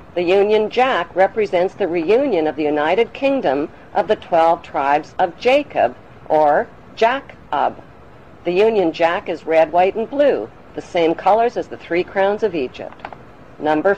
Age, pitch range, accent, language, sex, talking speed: 50-69, 165-225 Hz, American, English, female, 155 wpm